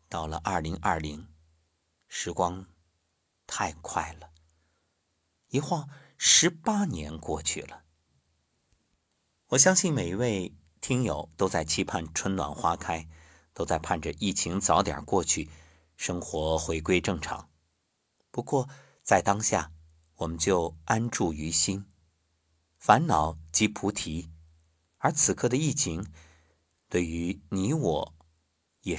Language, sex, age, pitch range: Chinese, male, 50-69, 80-105 Hz